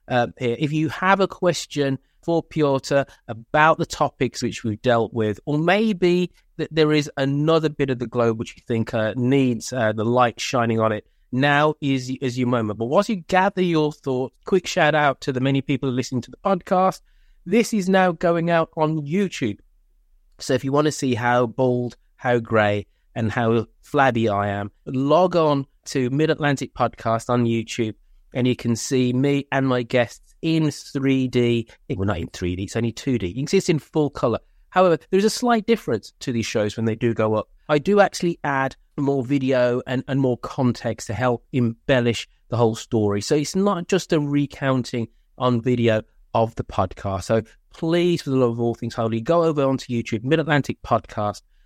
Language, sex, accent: English, male, British